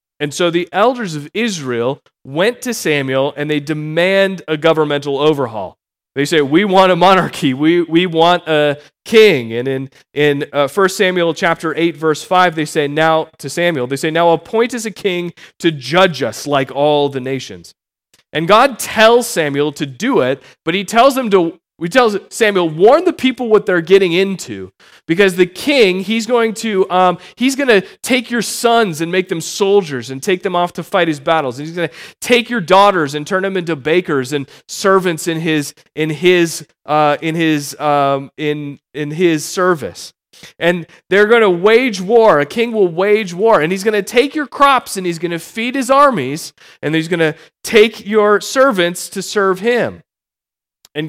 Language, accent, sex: English, American, male